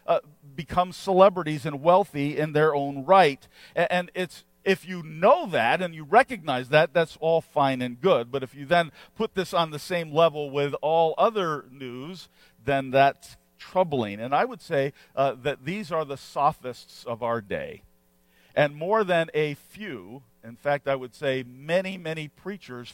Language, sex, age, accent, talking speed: English, male, 50-69, American, 180 wpm